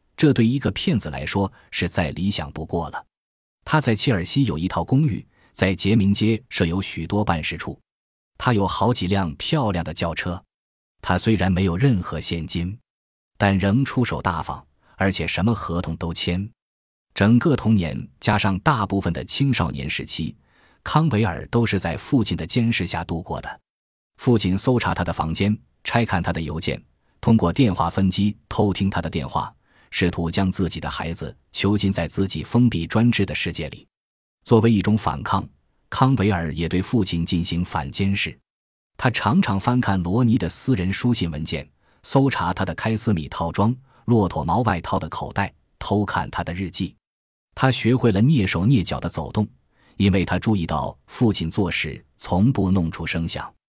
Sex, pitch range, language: male, 85-115 Hz, Chinese